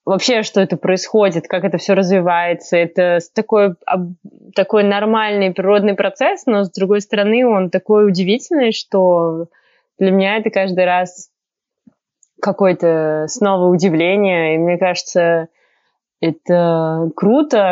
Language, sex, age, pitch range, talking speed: Russian, female, 20-39, 170-205 Hz, 120 wpm